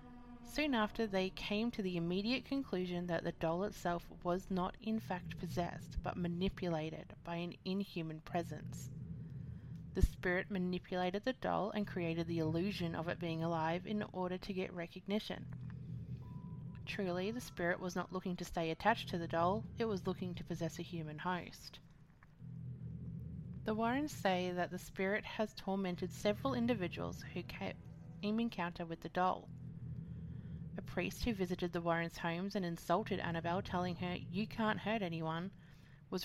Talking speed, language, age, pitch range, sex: 155 wpm, English, 30-49, 165-195 Hz, female